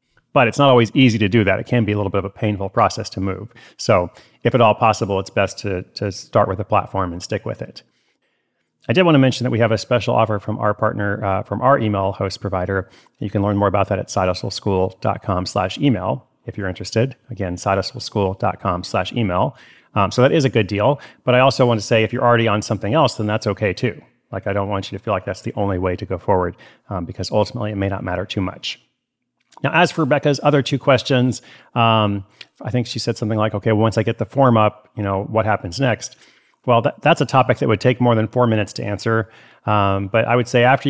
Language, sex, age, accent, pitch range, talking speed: English, male, 30-49, American, 100-125 Hz, 240 wpm